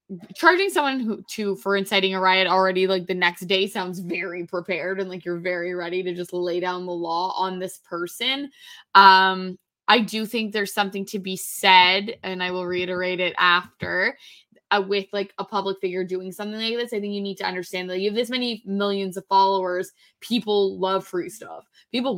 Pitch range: 185-225 Hz